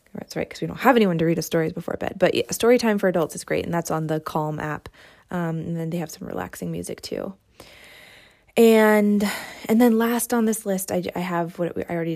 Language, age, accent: English, 20-39, American